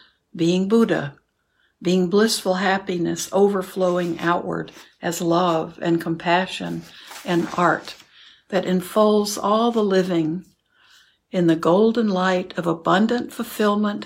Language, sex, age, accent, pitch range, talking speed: English, female, 60-79, American, 175-210 Hz, 105 wpm